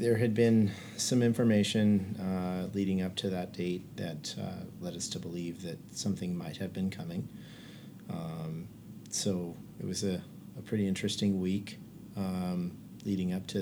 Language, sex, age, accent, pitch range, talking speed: English, male, 40-59, American, 90-105 Hz, 160 wpm